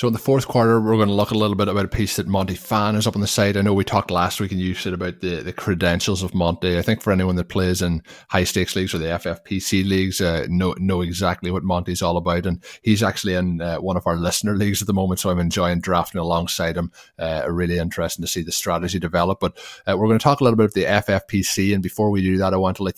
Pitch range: 90-105 Hz